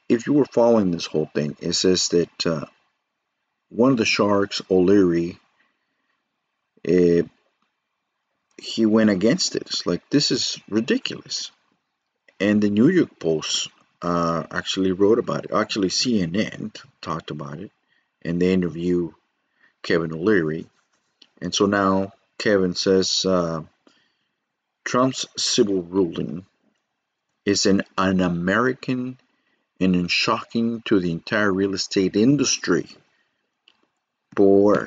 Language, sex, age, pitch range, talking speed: English, male, 50-69, 90-105 Hz, 115 wpm